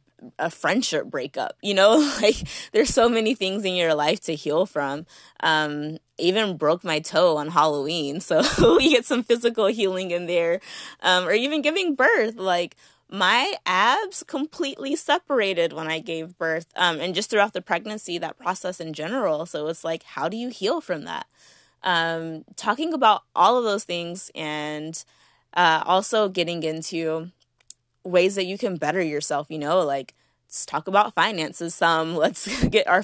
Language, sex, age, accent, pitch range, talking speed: English, female, 20-39, American, 160-195 Hz, 170 wpm